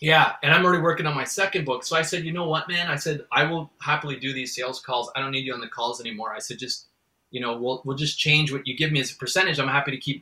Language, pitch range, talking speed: English, 135-170 Hz, 310 wpm